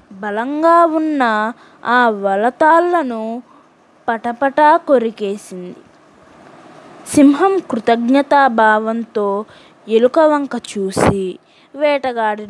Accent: native